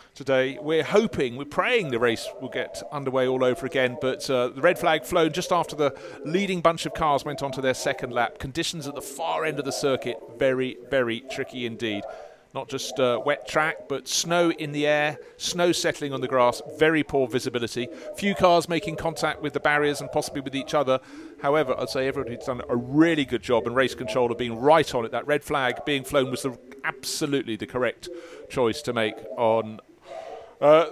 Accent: British